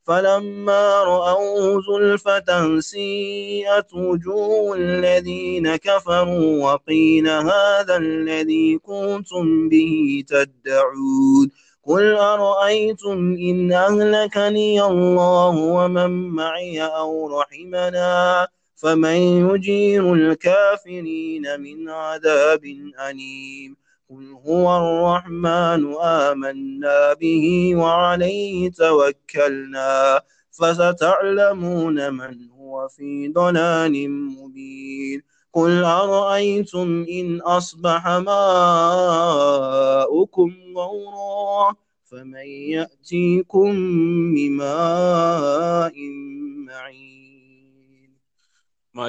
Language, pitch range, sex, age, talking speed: English, 145-195 Hz, male, 30-49, 60 wpm